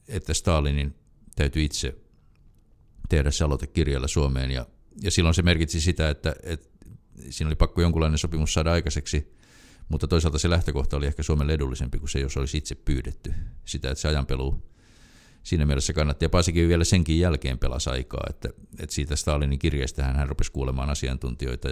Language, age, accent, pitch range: Finnish, 50-69, native, 70-85 Hz